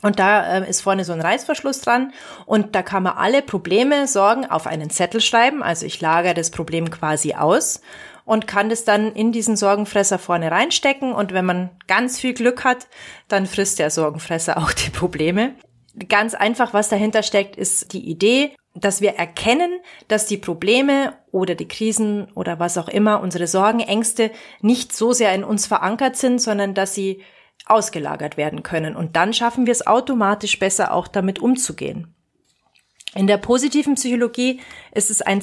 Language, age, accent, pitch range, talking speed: German, 30-49, German, 180-235 Hz, 175 wpm